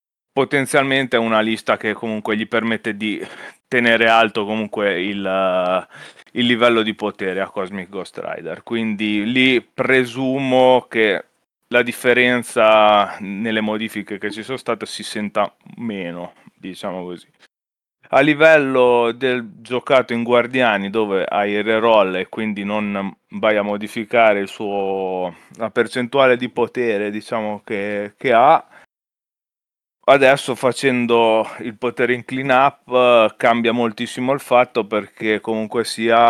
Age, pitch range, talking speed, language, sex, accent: 30-49, 105-120 Hz, 125 wpm, Italian, male, native